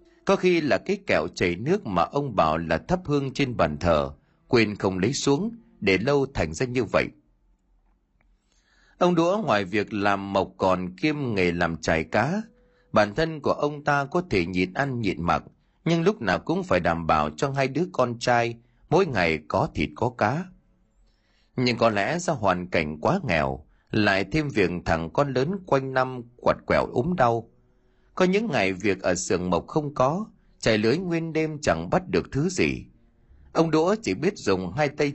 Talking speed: 190 wpm